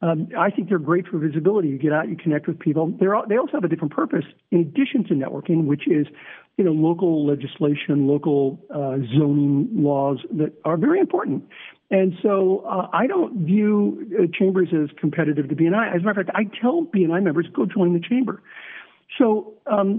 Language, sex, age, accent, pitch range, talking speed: English, male, 50-69, American, 150-200 Hz, 200 wpm